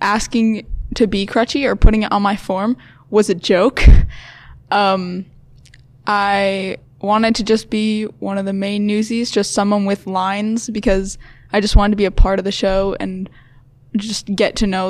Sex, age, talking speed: female, 20-39, 175 wpm